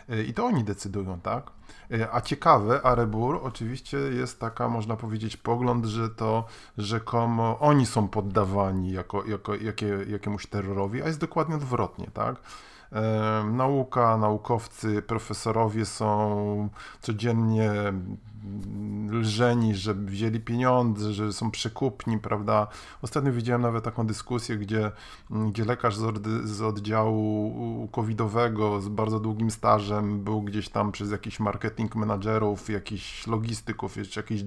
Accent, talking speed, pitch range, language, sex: native, 120 wpm, 105-120 Hz, Polish, male